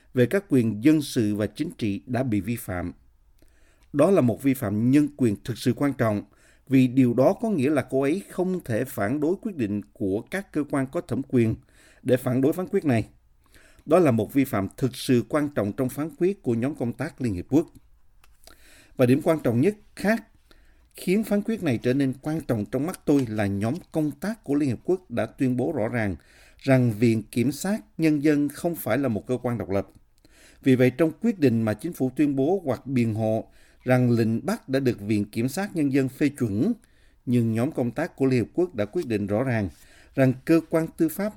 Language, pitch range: Vietnamese, 110-155 Hz